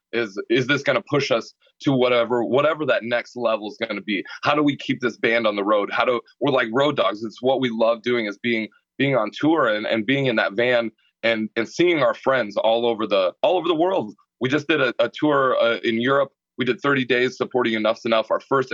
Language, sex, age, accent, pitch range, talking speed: English, male, 30-49, American, 115-135 Hz, 250 wpm